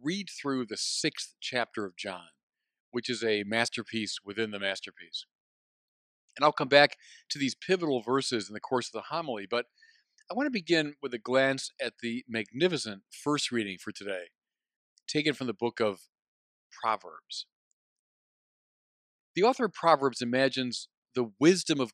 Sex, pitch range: male, 120-175 Hz